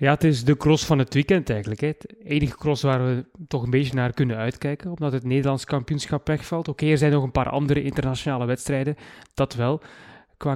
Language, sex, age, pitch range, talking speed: English, male, 20-39, 130-150 Hz, 220 wpm